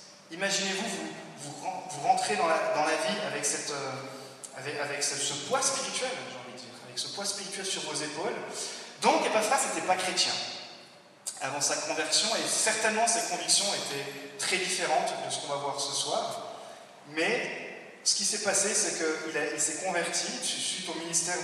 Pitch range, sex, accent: 140-195 Hz, male, French